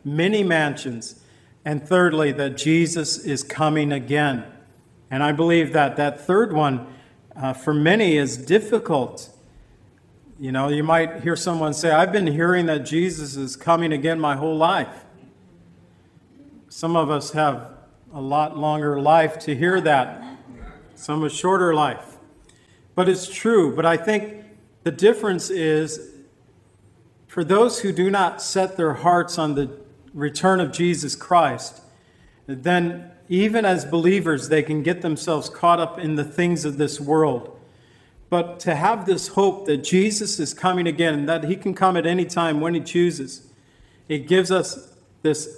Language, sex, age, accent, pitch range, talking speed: English, male, 50-69, American, 140-170 Hz, 155 wpm